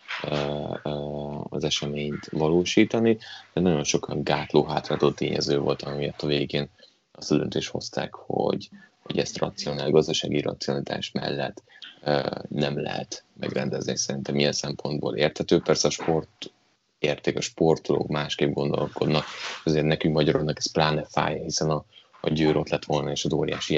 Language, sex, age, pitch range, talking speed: Hungarian, male, 20-39, 75-90 Hz, 135 wpm